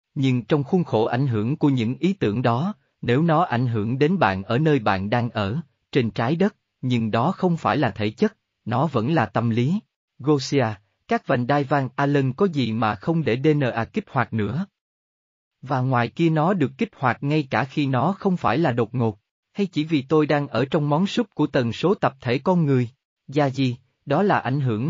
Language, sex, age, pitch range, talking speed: Vietnamese, male, 20-39, 115-160 Hz, 215 wpm